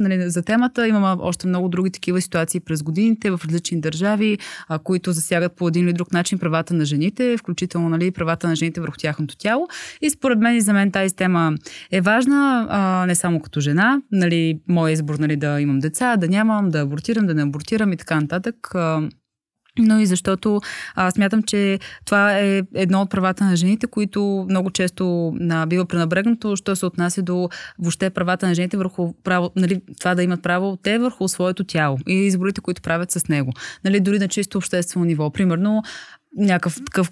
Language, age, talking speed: Bulgarian, 20-39, 175 wpm